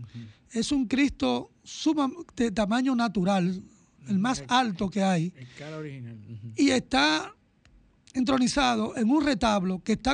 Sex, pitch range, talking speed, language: male, 205-265 Hz, 110 wpm, Spanish